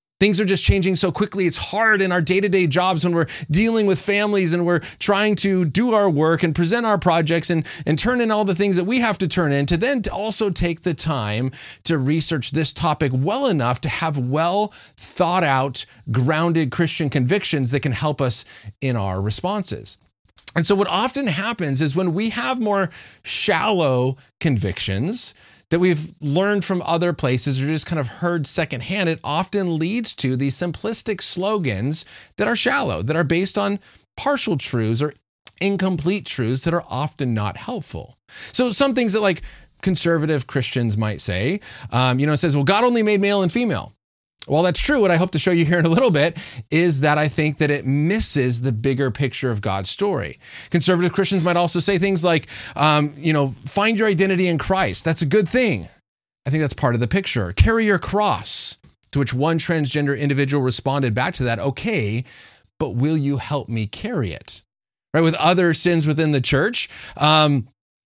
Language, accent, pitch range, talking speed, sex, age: English, American, 135-190 Hz, 190 wpm, male, 30-49